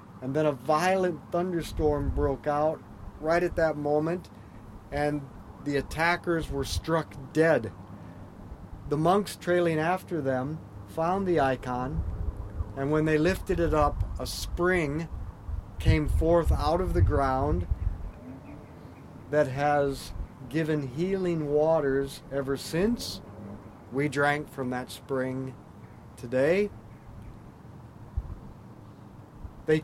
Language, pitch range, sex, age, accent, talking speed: English, 115-165 Hz, male, 40-59, American, 105 wpm